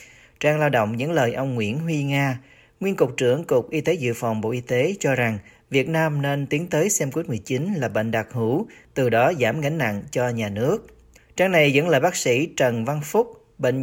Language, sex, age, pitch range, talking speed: Vietnamese, male, 40-59, 125-160 Hz, 225 wpm